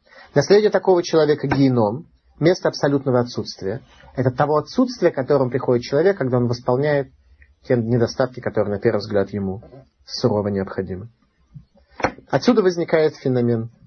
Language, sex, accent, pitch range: Russian, male, native, 120-170 Hz